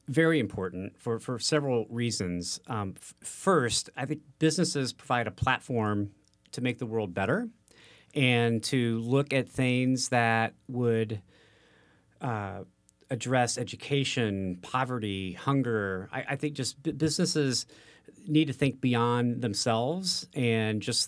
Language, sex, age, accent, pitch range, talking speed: English, male, 40-59, American, 110-140 Hz, 130 wpm